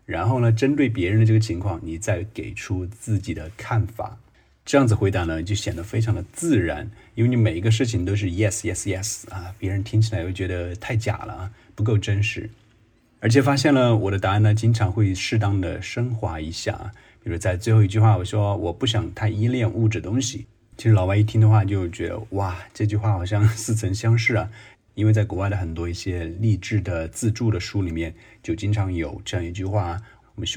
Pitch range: 95-110 Hz